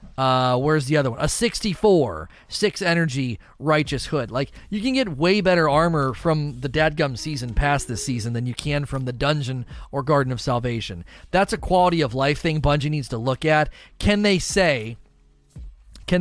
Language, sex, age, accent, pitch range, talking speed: English, male, 40-59, American, 135-185 Hz, 185 wpm